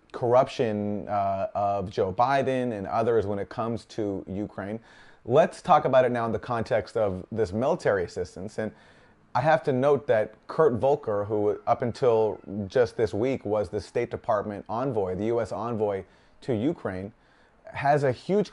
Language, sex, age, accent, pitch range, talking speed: English, male, 30-49, American, 105-135 Hz, 165 wpm